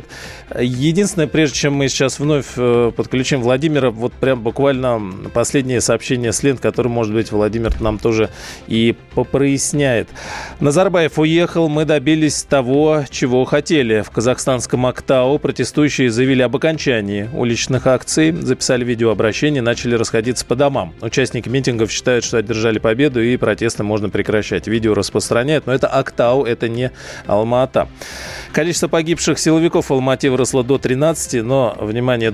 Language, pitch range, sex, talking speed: Russian, 115-140 Hz, male, 135 wpm